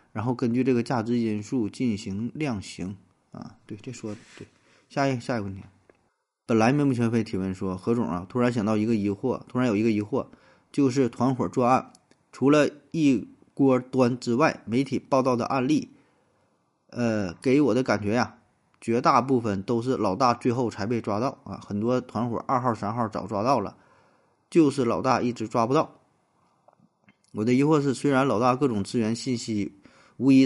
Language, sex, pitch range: Chinese, male, 100-125 Hz